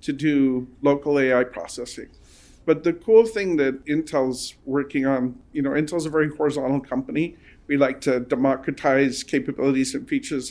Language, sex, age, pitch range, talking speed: English, male, 50-69, 130-165 Hz, 155 wpm